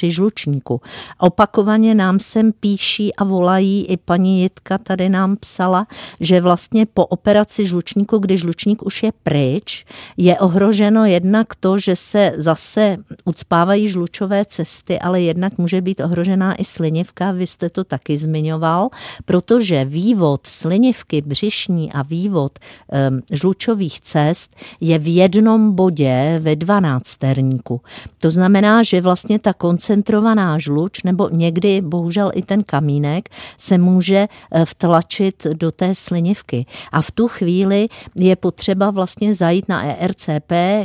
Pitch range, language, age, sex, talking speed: 165-195 Hz, Czech, 50-69, female, 130 wpm